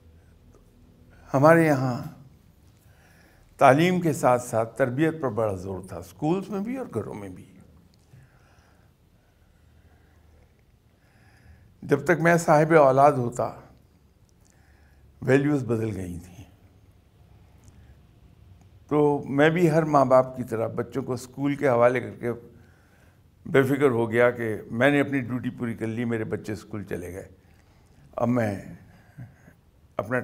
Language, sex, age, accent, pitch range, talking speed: English, male, 60-79, Indian, 90-135 Hz, 120 wpm